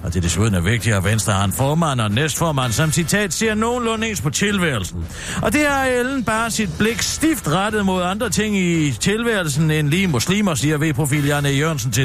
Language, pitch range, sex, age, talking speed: Danish, 115-185 Hz, male, 60-79, 215 wpm